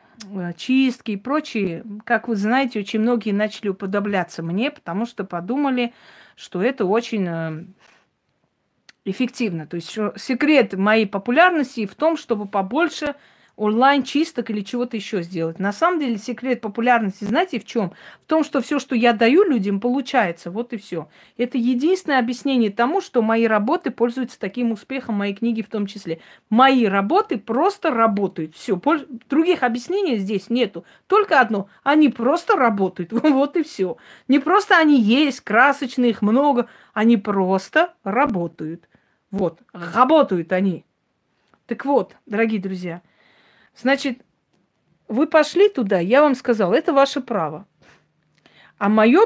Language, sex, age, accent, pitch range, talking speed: Russian, female, 40-59, native, 205-270 Hz, 140 wpm